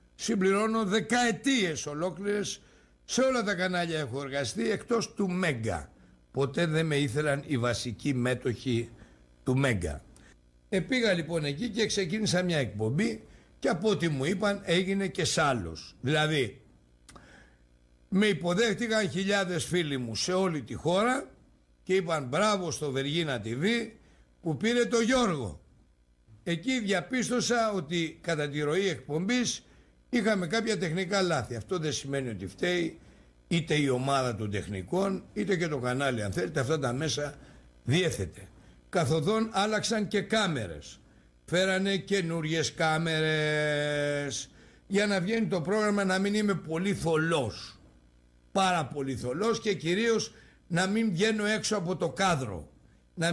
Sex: male